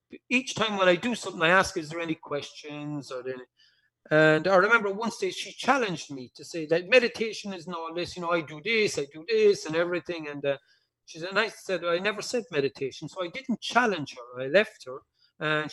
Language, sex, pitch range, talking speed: English, male, 155-210 Hz, 220 wpm